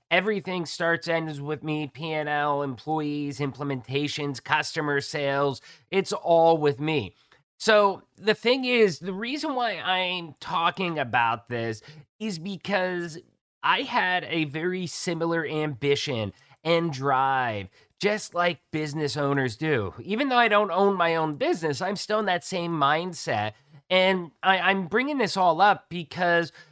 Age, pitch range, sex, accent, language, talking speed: 30-49, 145-185 Hz, male, American, English, 140 wpm